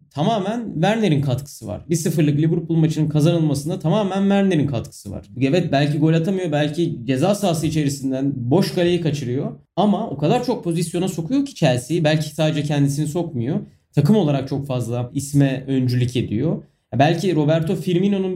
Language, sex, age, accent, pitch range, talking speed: Turkish, male, 30-49, native, 135-175 Hz, 145 wpm